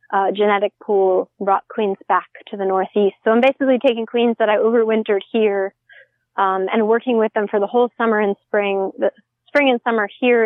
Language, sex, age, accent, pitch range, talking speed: English, female, 20-39, American, 210-255 Hz, 195 wpm